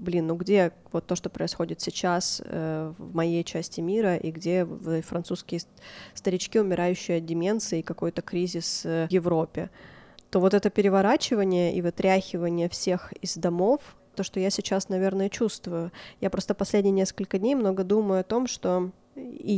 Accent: native